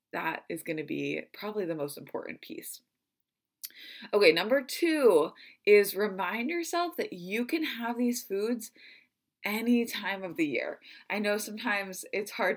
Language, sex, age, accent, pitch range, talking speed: English, female, 20-39, American, 180-245 Hz, 155 wpm